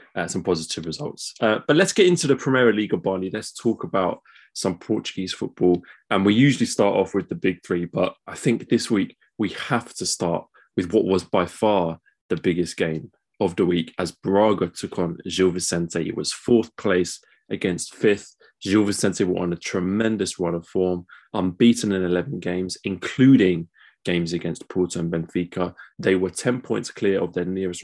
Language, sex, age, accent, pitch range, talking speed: English, male, 20-39, British, 85-110 Hz, 190 wpm